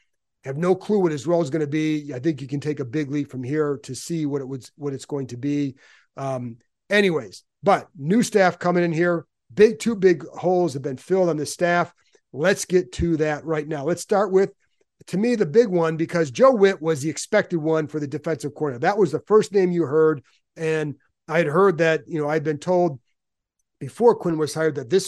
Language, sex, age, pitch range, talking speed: English, male, 40-59, 145-175 Hz, 230 wpm